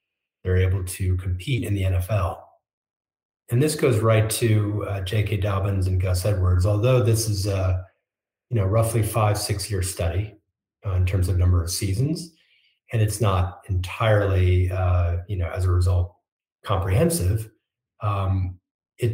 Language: English